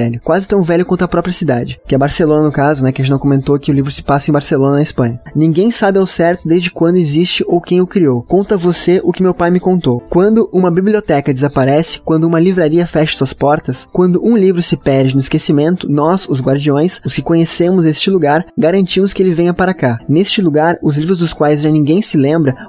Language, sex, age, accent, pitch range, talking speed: Portuguese, male, 20-39, Brazilian, 150-180 Hz, 230 wpm